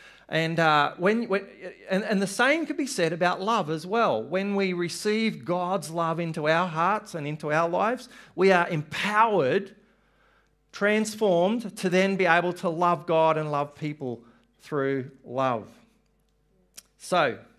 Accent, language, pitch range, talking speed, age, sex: Australian, English, 140-190 Hz, 150 wpm, 40-59, male